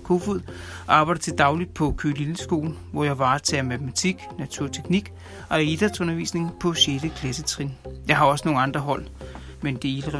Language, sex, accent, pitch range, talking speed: Danish, male, native, 135-180 Hz, 175 wpm